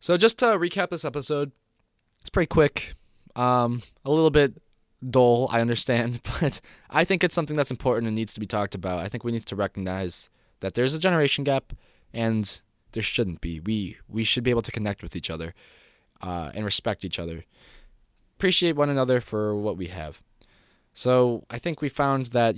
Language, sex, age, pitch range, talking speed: English, male, 20-39, 100-130 Hz, 190 wpm